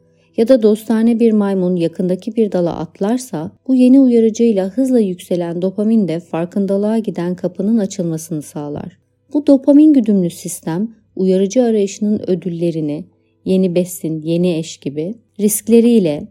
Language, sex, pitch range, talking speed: Turkish, female, 170-225 Hz, 125 wpm